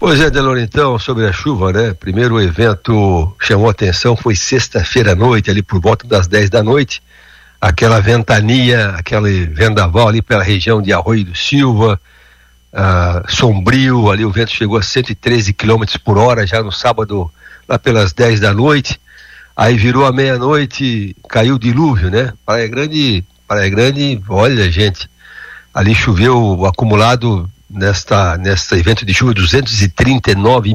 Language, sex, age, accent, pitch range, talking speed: Portuguese, male, 60-79, Brazilian, 100-130 Hz, 150 wpm